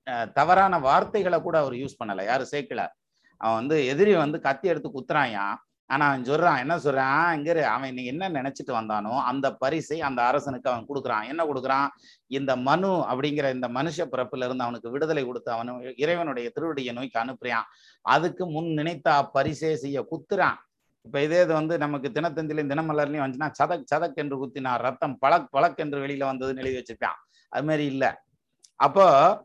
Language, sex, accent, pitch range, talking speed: Tamil, male, native, 130-160 Hz, 145 wpm